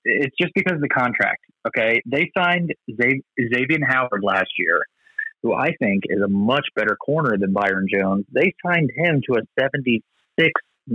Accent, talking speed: American, 165 wpm